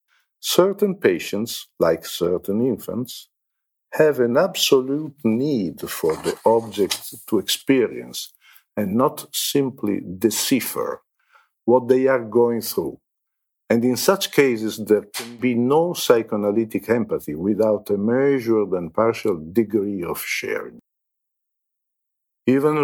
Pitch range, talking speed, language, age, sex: 110-135 Hz, 110 wpm, English, 50-69, male